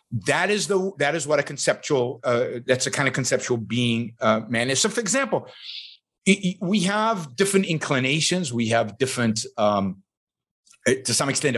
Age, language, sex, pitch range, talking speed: 50-69, English, male, 125-195 Hz, 175 wpm